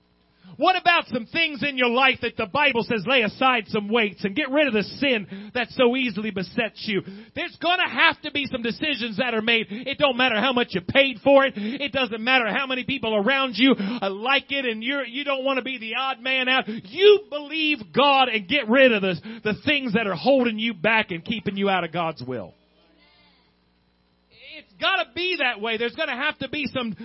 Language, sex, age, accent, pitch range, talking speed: English, male, 40-59, American, 195-270 Hz, 225 wpm